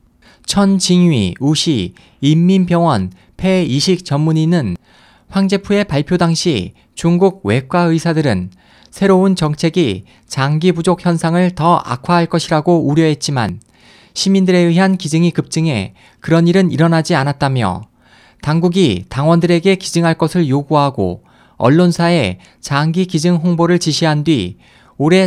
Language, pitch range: Korean, 135-180 Hz